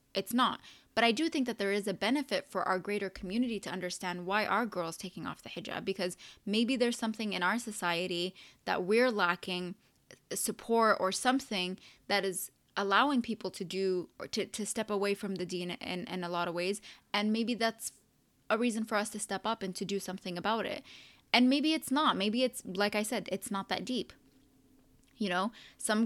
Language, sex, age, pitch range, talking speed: English, female, 20-39, 185-215 Hz, 205 wpm